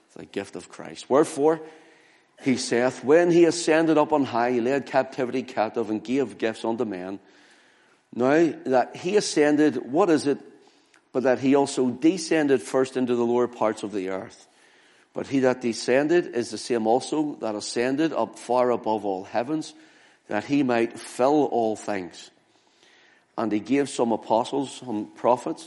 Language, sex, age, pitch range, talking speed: English, male, 50-69, 120-155 Hz, 165 wpm